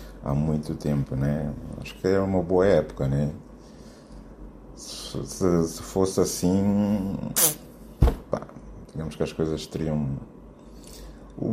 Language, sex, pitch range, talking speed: Portuguese, male, 80-125 Hz, 110 wpm